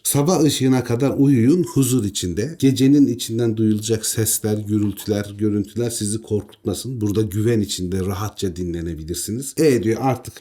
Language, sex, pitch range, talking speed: Turkish, male, 90-125 Hz, 125 wpm